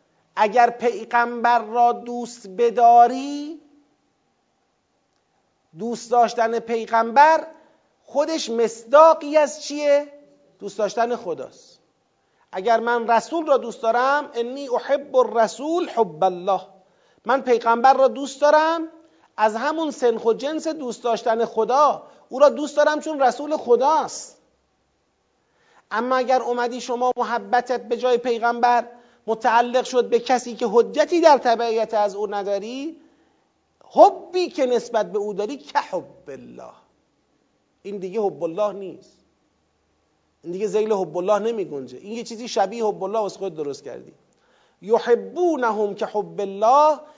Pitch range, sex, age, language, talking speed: 215-285 Hz, male, 40-59, Persian, 130 wpm